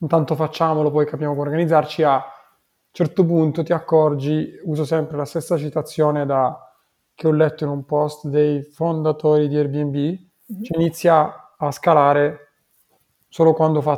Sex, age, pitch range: male, 30-49, 145-165 Hz